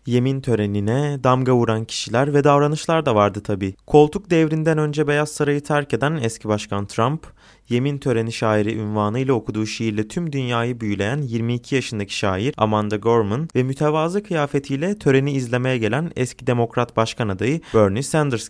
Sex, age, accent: male, 30-49, native